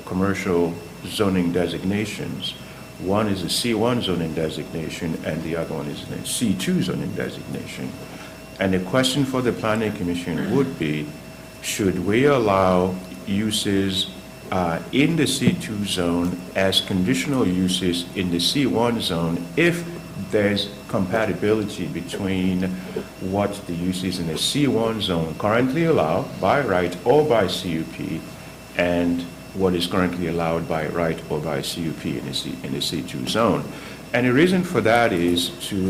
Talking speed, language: 140 wpm, English